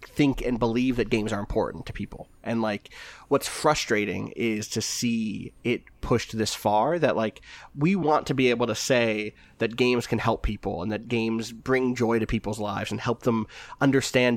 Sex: male